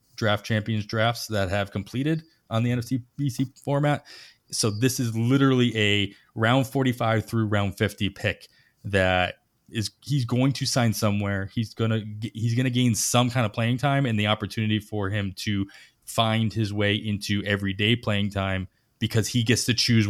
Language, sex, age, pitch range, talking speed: English, male, 20-39, 105-125 Hz, 175 wpm